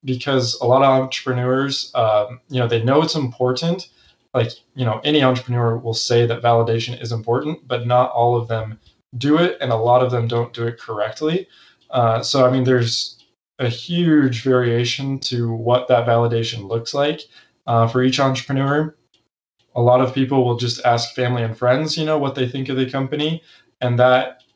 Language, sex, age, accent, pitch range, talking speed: English, male, 20-39, American, 120-135 Hz, 190 wpm